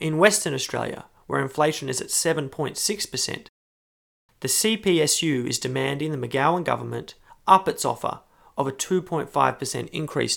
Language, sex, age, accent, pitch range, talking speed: English, male, 30-49, Australian, 125-160 Hz, 125 wpm